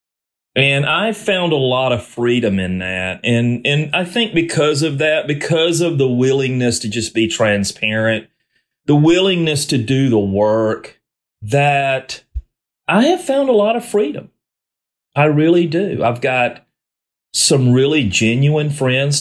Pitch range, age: 115-155 Hz, 40-59